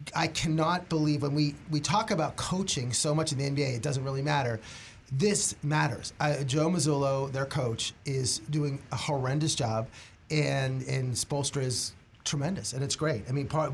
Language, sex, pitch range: English, male, 135-170 Hz